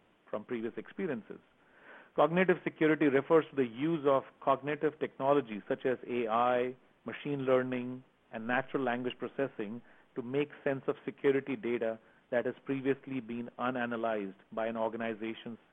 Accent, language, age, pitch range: Indian, English, 40-59, 125-150 Hz